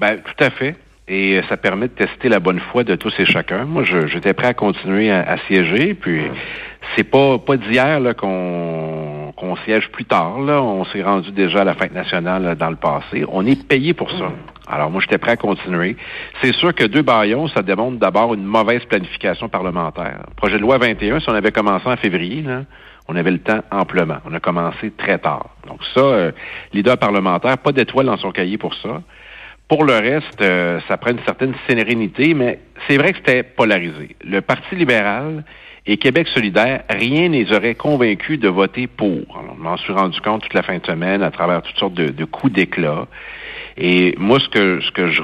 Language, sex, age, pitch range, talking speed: French, male, 60-79, 95-125 Hz, 210 wpm